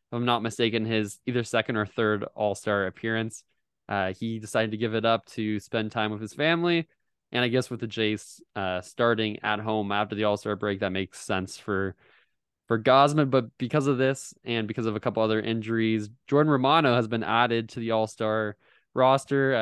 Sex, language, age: male, English, 20-39